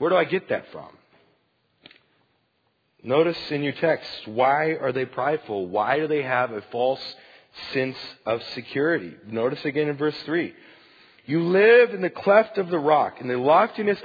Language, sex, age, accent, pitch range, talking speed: English, male, 40-59, American, 130-215 Hz, 165 wpm